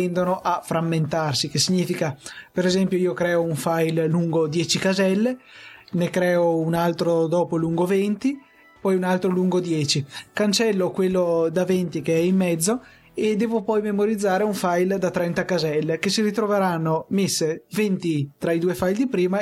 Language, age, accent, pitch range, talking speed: Italian, 20-39, native, 160-185 Hz, 165 wpm